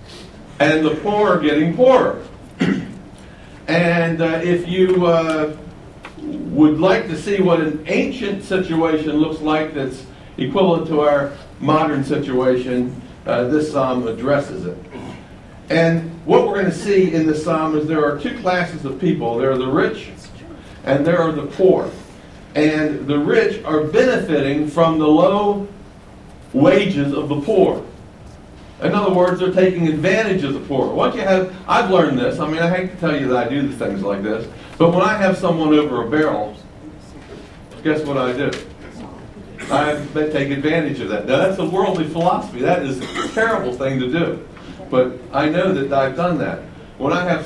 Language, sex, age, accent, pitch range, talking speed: English, male, 60-79, American, 140-180 Hz, 170 wpm